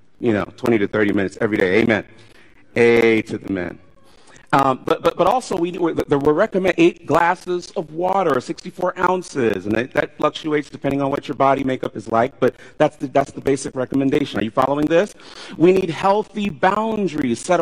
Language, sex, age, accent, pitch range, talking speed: English, male, 40-59, American, 145-210 Hz, 190 wpm